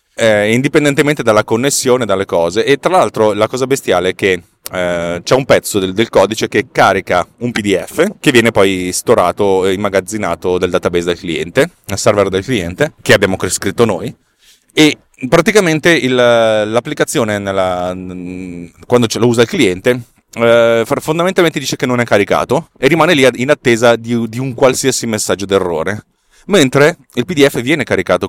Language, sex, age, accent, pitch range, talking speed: Italian, male, 30-49, native, 95-125 Hz, 165 wpm